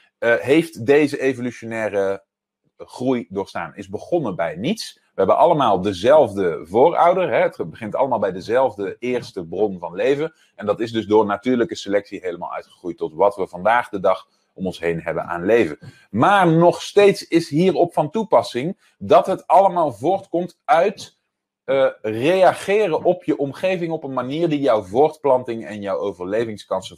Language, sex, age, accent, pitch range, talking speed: Dutch, male, 30-49, Dutch, 120-175 Hz, 160 wpm